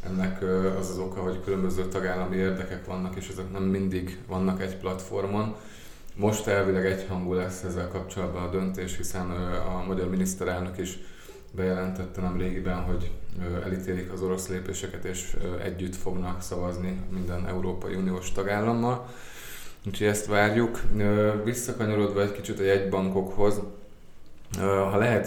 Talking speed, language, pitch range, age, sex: 130 wpm, Hungarian, 90-95 Hz, 20-39, male